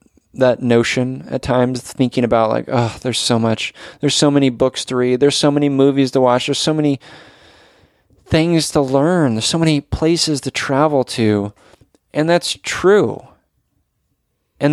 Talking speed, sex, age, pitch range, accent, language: 165 wpm, male, 20-39, 125-165 Hz, American, English